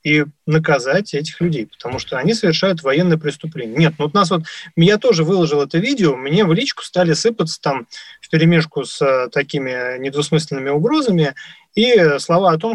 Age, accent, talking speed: 20-39, native, 175 wpm